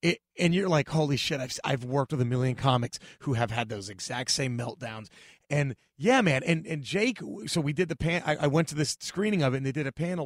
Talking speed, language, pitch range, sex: 255 wpm, English, 115-155 Hz, male